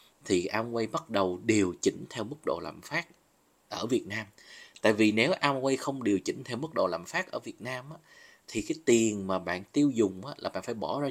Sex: male